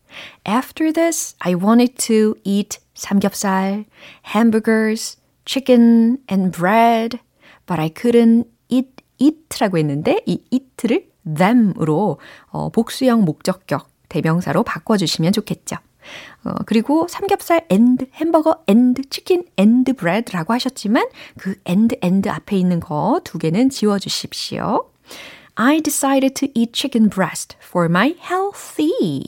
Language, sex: Korean, female